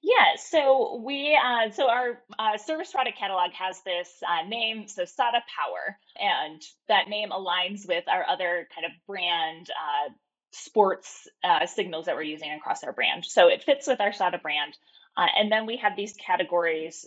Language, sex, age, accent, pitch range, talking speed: English, female, 20-39, American, 180-245 Hz, 180 wpm